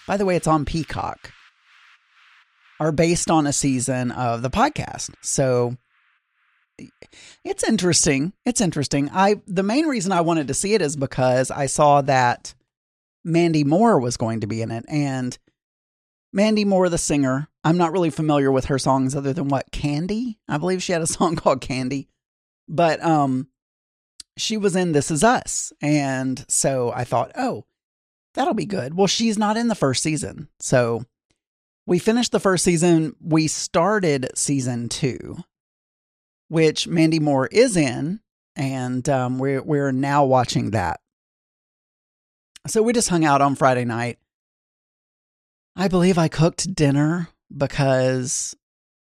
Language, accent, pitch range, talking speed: English, American, 130-175 Hz, 150 wpm